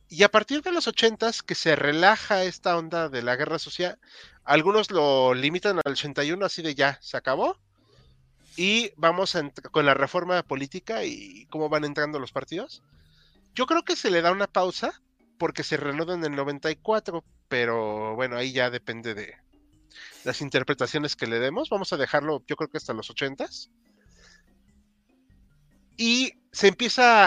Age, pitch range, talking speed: 30-49, 140-200 Hz, 165 wpm